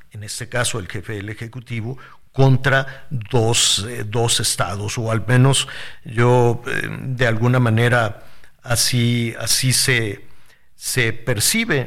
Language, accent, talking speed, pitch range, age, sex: Spanish, Mexican, 125 wpm, 115-140 Hz, 50-69, male